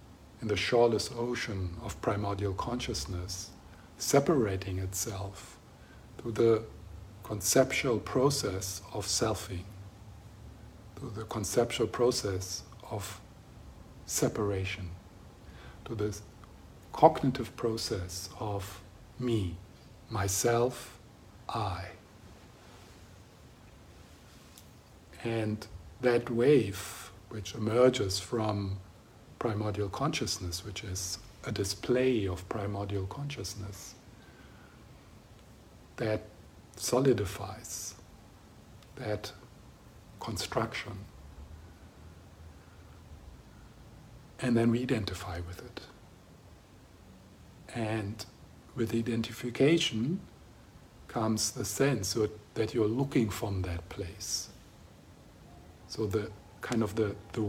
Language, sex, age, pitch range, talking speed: English, male, 50-69, 95-115 Hz, 75 wpm